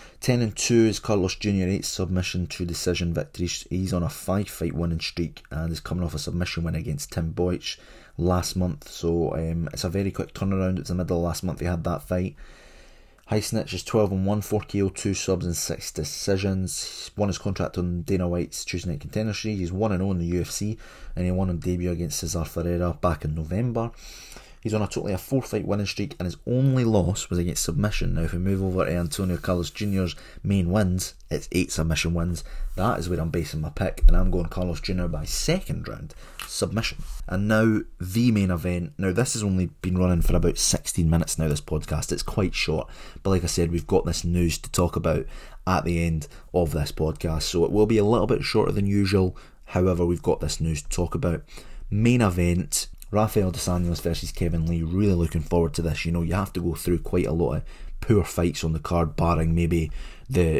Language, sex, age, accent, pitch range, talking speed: English, male, 20-39, British, 85-95 Hz, 215 wpm